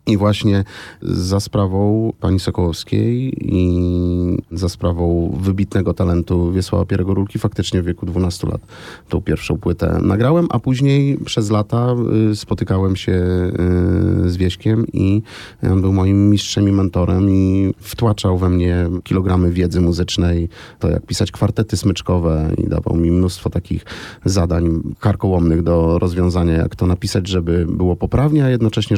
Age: 30-49